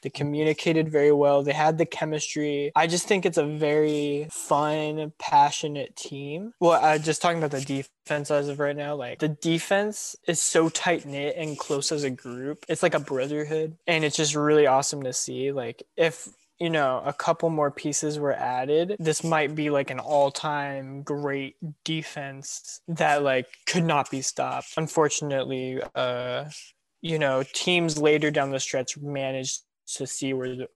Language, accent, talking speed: English, American, 170 wpm